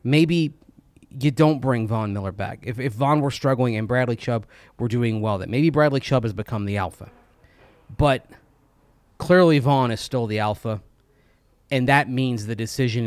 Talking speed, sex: 175 wpm, male